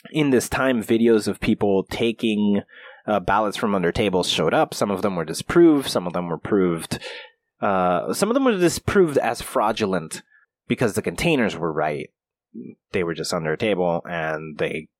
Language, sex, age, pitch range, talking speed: English, male, 30-49, 95-140 Hz, 180 wpm